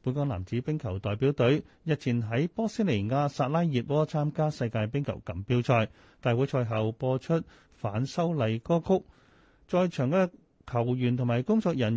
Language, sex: Chinese, male